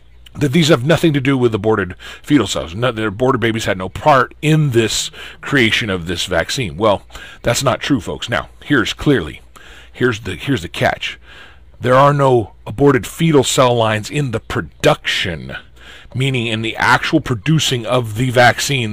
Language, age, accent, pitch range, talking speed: English, 40-59, American, 95-145 Hz, 170 wpm